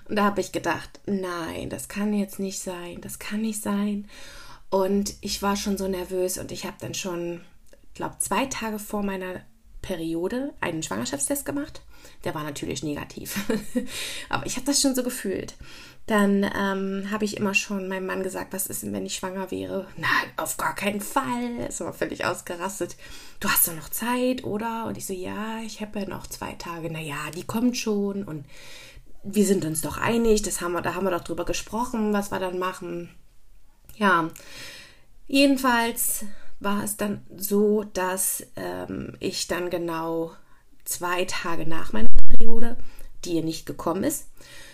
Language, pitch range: German, 170-215 Hz